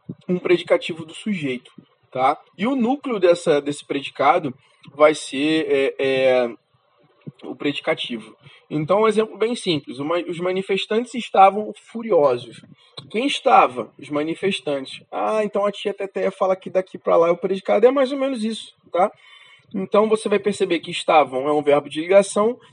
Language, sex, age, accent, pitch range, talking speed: Portuguese, male, 20-39, Brazilian, 150-210 Hz, 160 wpm